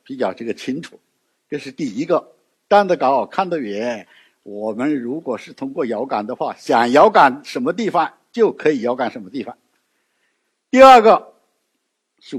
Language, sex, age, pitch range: Chinese, male, 60-79, 155-250 Hz